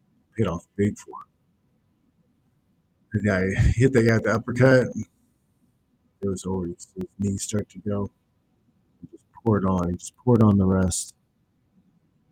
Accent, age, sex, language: American, 50-69, male, English